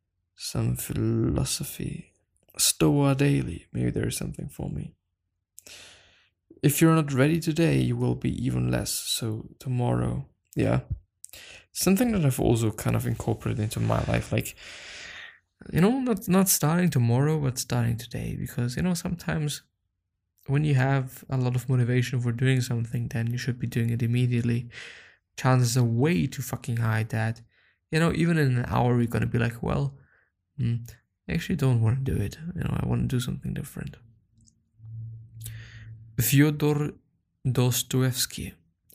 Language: English